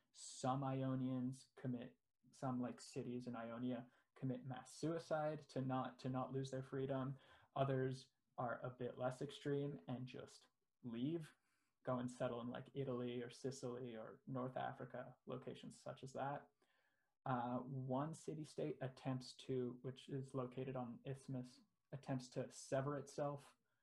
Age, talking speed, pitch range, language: 20-39, 140 wpm, 125-135 Hz, English